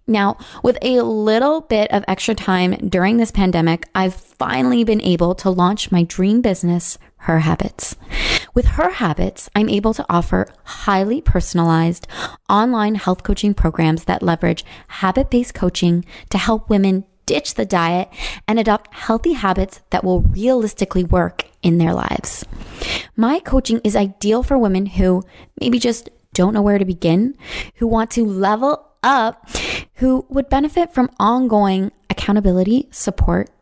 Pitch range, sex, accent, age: 180-230 Hz, female, American, 20-39